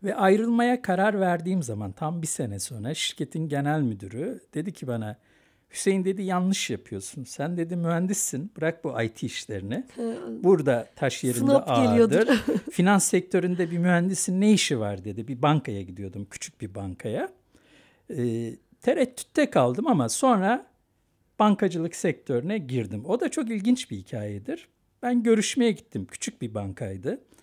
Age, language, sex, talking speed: 60-79, Turkish, male, 140 wpm